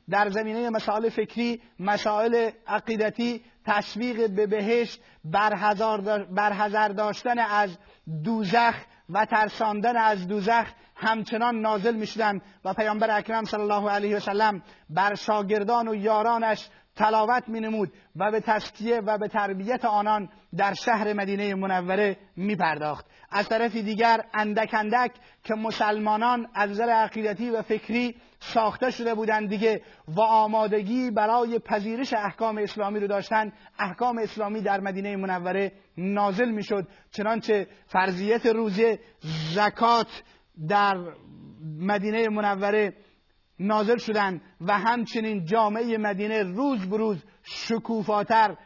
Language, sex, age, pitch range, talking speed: Persian, male, 30-49, 205-225 Hz, 120 wpm